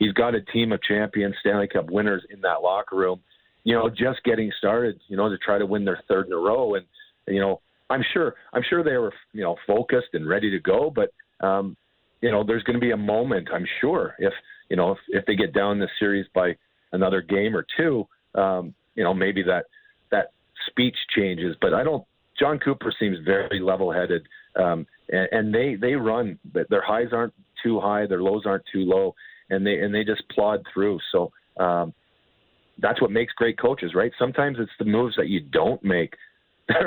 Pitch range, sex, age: 95-120 Hz, male, 50-69